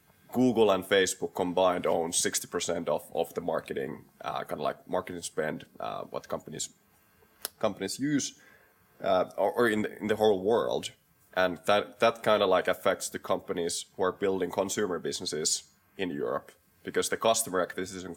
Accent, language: native, Finnish